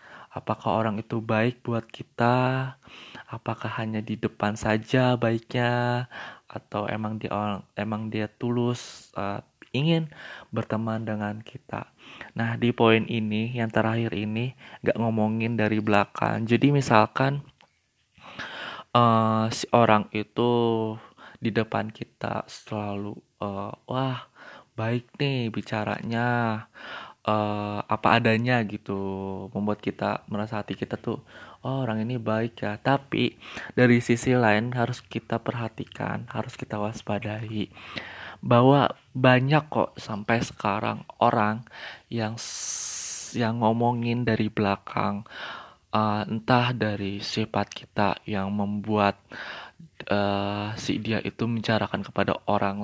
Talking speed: 115 wpm